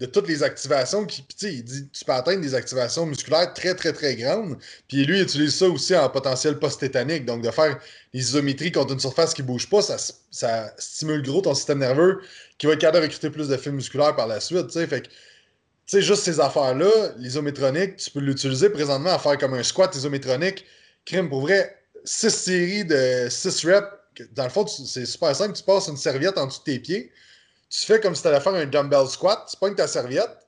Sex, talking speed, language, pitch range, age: male, 215 wpm, French, 135-180 Hz, 20-39